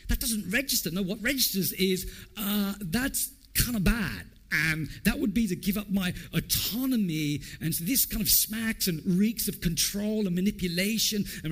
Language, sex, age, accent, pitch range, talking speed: English, male, 50-69, British, 140-200 Hz, 175 wpm